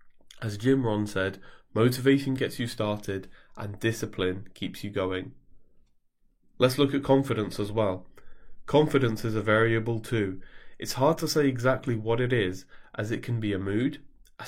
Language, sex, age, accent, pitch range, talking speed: English, male, 20-39, British, 105-130 Hz, 160 wpm